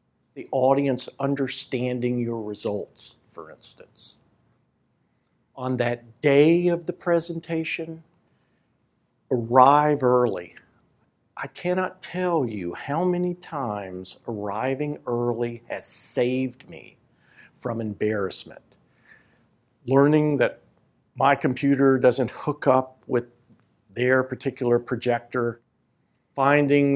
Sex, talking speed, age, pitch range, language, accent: male, 90 wpm, 50-69, 120-145 Hz, English, American